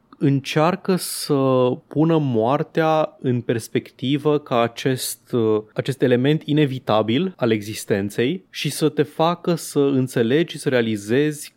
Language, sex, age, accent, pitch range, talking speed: Romanian, male, 20-39, native, 115-155 Hz, 115 wpm